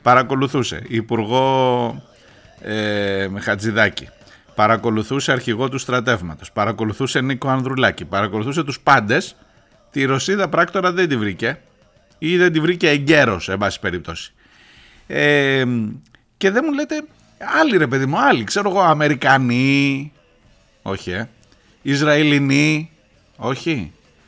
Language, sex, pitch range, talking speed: Greek, male, 110-150 Hz, 110 wpm